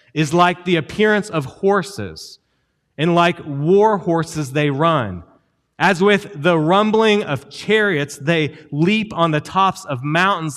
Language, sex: English, male